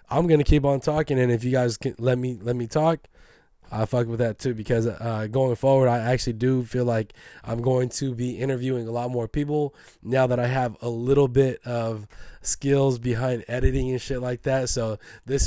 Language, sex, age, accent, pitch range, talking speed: English, male, 20-39, American, 115-135 Hz, 215 wpm